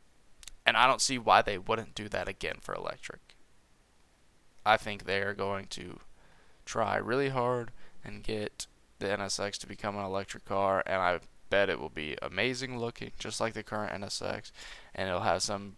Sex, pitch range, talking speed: male, 100-125 Hz, 175 wpm